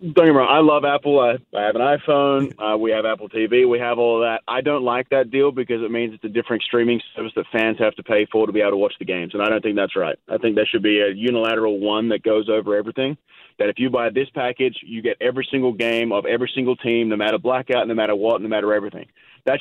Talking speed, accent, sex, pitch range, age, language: 285 wpm, American, male, 110-130 Hz, 30-49, English